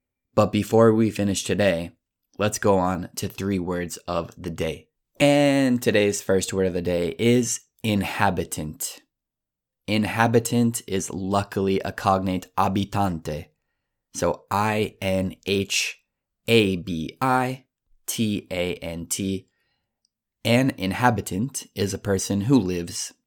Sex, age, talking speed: male, 20-39, 100 wpm